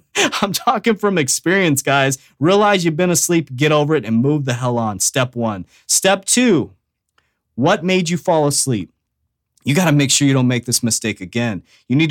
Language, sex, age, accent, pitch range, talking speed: English, male, 30-49, American, 130-185 Hz, 195 wpm